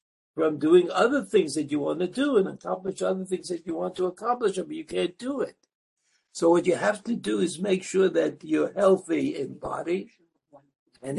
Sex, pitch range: male, 155-240 Hz